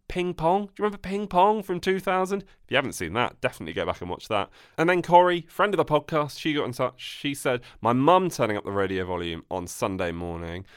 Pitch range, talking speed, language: 105-175 Hz, 240 wpm, English